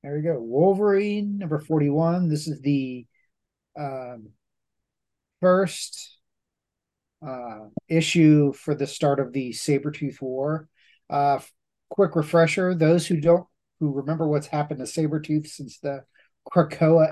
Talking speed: 125 wpm